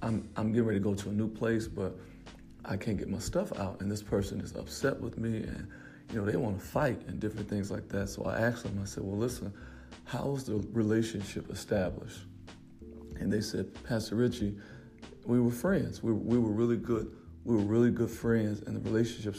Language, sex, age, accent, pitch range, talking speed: English, male, 40-59, American, 100-115 Hz, 215 wpm